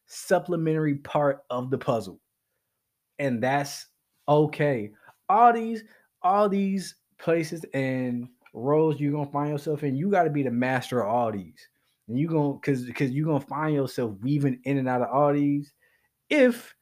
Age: 20-39